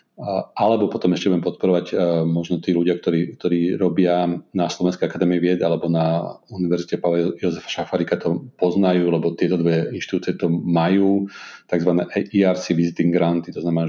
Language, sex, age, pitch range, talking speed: Slovak, male, 40-59, 85-95 Hz, 150 wpm